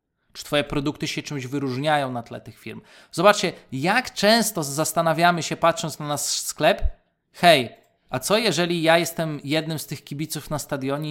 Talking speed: 165 wpm